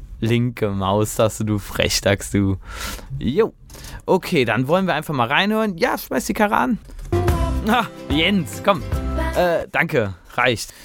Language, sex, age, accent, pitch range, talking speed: German, male, 20-39, German, 110-160 Hz, 135 wpm